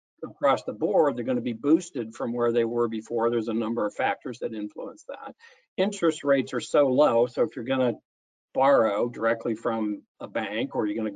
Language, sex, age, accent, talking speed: English, male, 60-79, American, 215 wpm